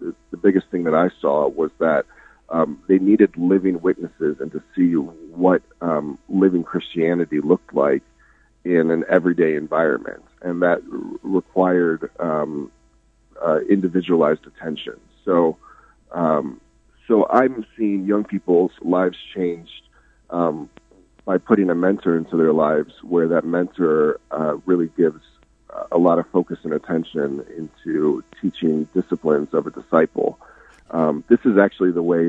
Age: 40-59